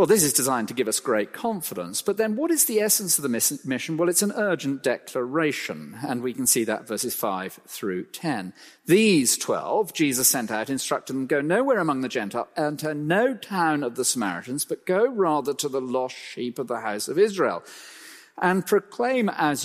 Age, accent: 40-59, British